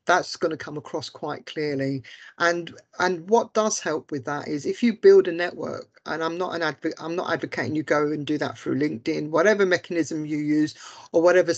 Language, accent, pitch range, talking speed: English, British, 155-205 Hz, 210 wpm